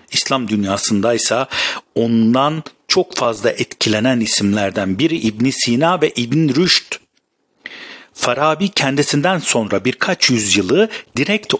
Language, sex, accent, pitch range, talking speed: Turkish, male, native, 110-155 Hz, 100 wpm